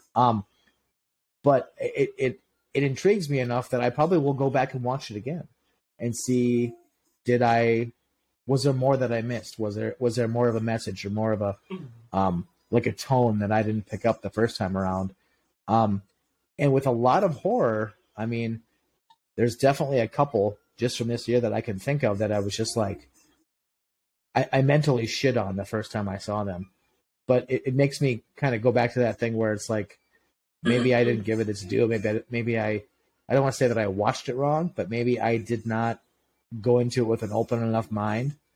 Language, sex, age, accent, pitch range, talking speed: English, male, 30-49, American, 110-130 Hz, 220 wpm